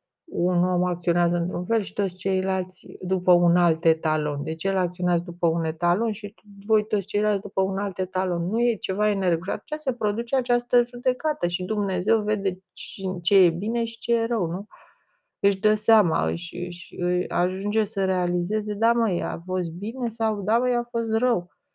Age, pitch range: 30-49, 175-225 Hz